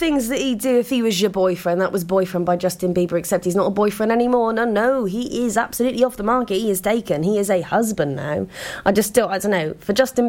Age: 20-39